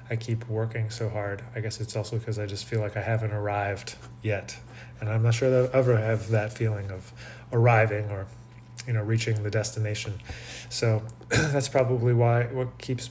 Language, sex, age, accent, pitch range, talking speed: English, male, 20-39, American, 110-120 Hz, 190 wpm